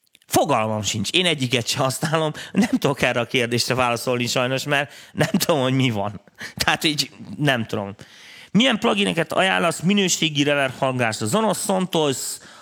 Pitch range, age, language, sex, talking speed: 120-160 Hz, 30-49, Hungarian, male, 145 wpm